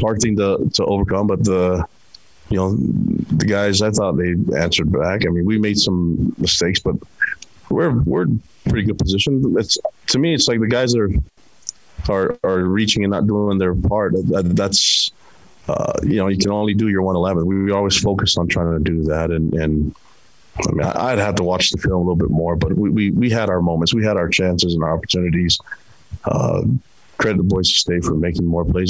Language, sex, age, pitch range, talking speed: English, male, 30-49, 85-100 Hz, 215 wpm